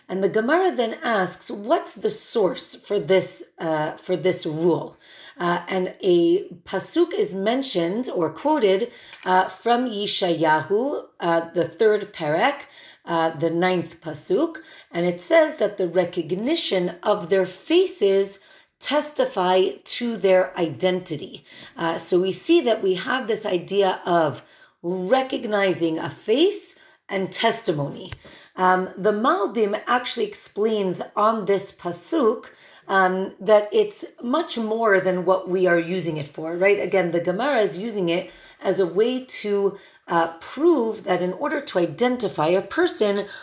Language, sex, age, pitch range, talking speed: English, female, 40-59, 180-240 Hz, 140 wpm